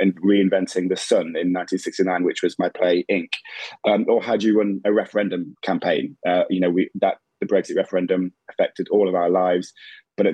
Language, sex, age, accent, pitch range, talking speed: English, male, 20-39, British, 90-100 Hz, 205 wpm